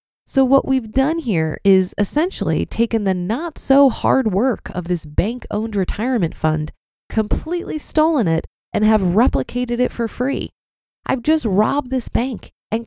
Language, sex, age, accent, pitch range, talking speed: English, female, 20-39, American, 195-255 Hz, 160 wpm